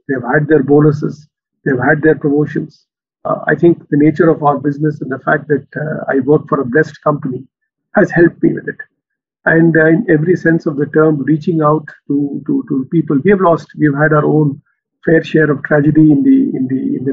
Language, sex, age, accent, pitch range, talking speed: Hindi, male, 50-69, native, 145-170 Hz, 230 wpm